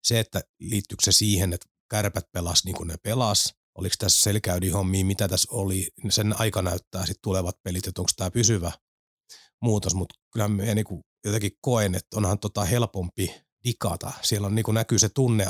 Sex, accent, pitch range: male, native, 95-110 Hz